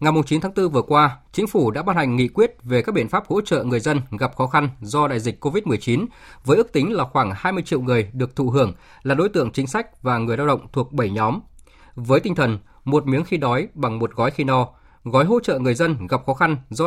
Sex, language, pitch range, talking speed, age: male, Vietnamese, 120-155 Hz, 255 wpm, 20-39